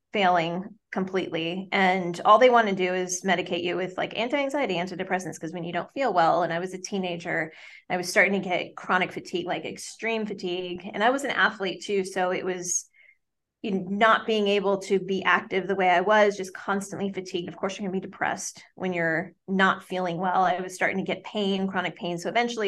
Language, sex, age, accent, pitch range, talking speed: English, female, 20-39, American, 180-210 Hz, 210 wpm